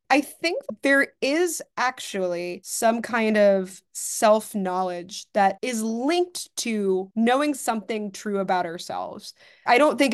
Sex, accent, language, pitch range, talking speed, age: female, American, English, 190-240 Hz, 130 wpm, 20-39